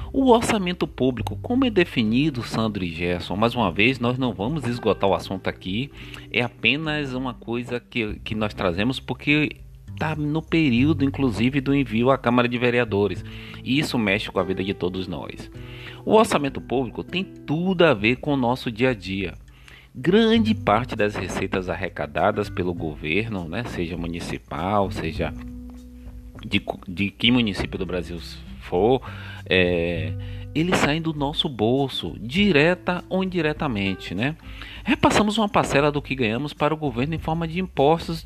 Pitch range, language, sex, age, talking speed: 95-150 Hz, Portuguese, male, 30-49, 160 wpm